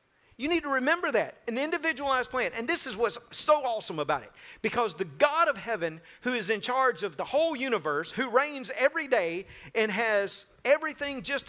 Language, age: English, 50-69